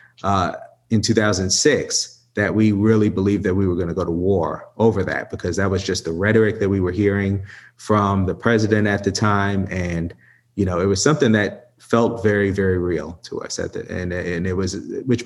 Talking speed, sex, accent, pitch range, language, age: 210 wpm, male, American, 95-110 Hz, English, 30-49